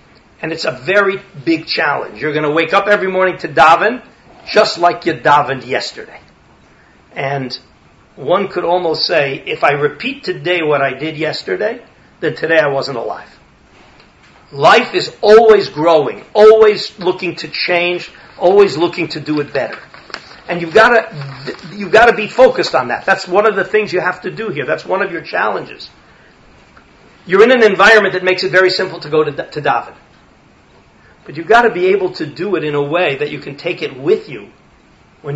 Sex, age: male, 50-69